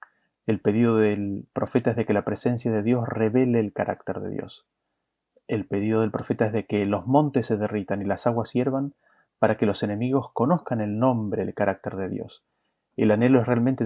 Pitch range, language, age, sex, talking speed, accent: 110-135 Hz, Spanish, 30-49, male, 200 wpm, Argentinian